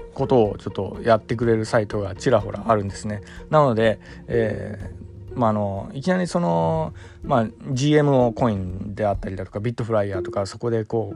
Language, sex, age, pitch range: Japanese, male, 20-39, 100-135 Hz